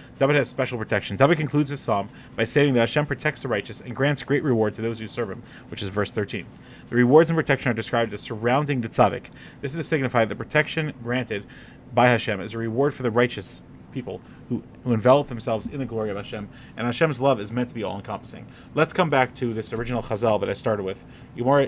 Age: 30-49